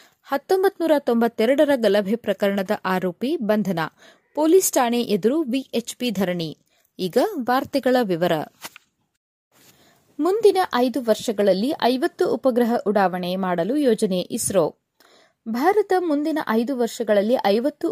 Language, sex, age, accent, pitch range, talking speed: Kannada, female, 20-39, native, 210-290 Hz, 95 wpm